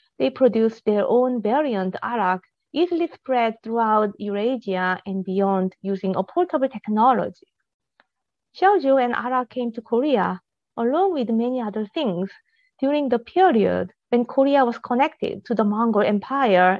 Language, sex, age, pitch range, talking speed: English, female, 30-49, 210-280 Hz, 135 wpm